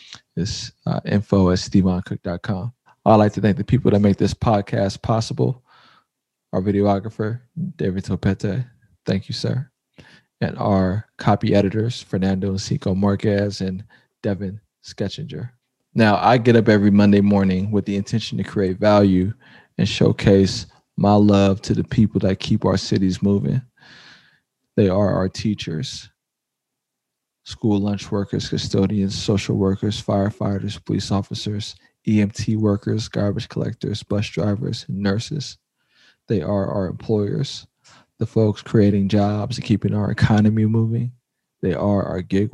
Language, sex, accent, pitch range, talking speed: English, male, American, 100-110 Hz, 135 wpm